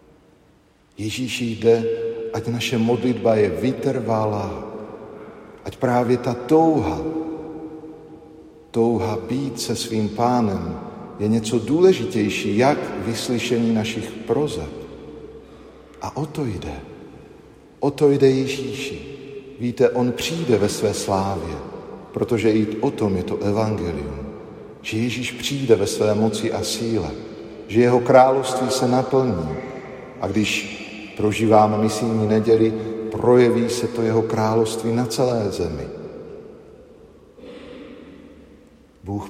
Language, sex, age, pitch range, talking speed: Slovak, male, 50-69, 110-125 Hz, 110 wpm